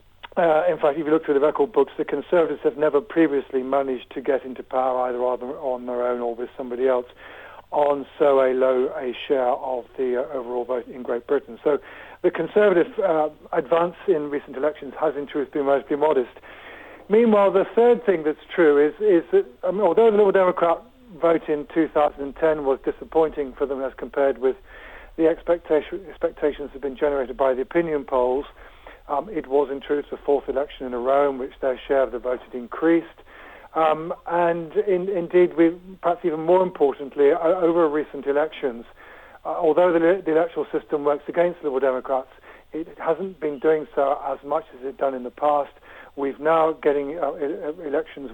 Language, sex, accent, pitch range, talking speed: English, male, British, 135-165 Hz, 190 wpm